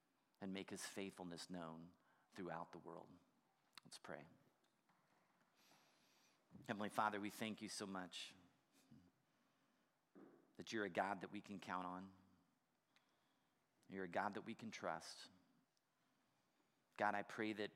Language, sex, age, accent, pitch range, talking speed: English, male, 40-59, American, 95-110 Hz, 125 wpm